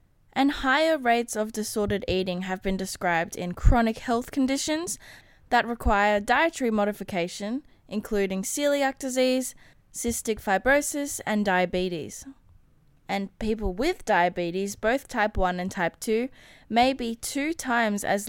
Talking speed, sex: 130 wpm, female